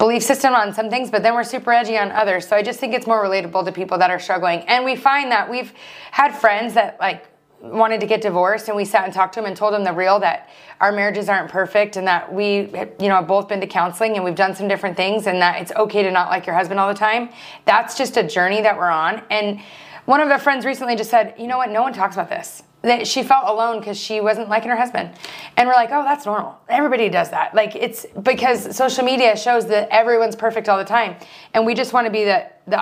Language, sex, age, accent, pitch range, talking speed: English, female, 30-49, American, 190-235 Hz, 265 wpm